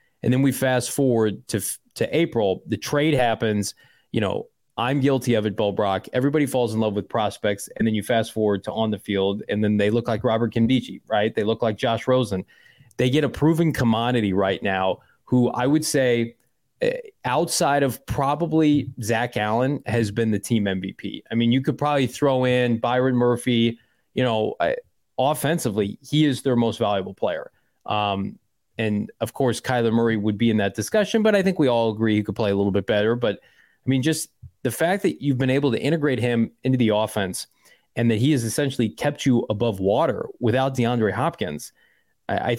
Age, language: 20-39, English